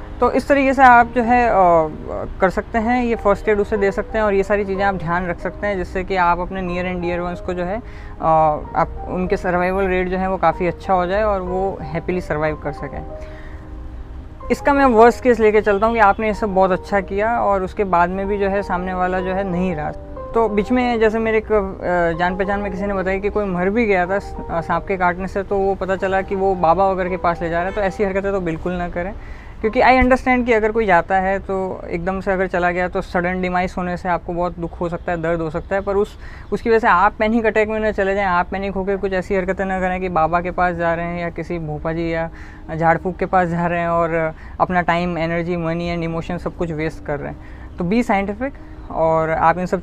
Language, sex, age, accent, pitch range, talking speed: Hindi, female, 20-39, native, 175-200 Hz, 255 wpm